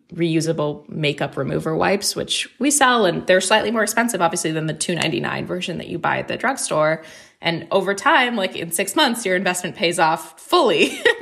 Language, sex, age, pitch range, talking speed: English, female, 20-39, 155-200 Hz, 195 wpm